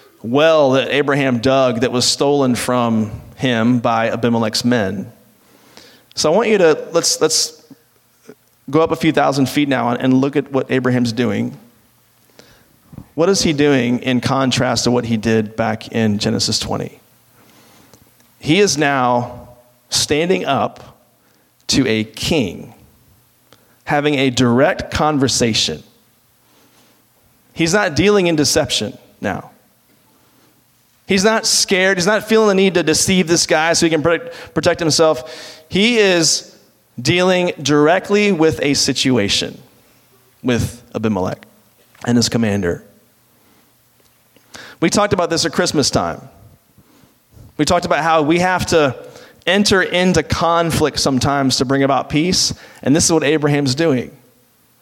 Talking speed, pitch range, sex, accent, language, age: 130 wpm, 125-170 Hz, male, American, English, 40-59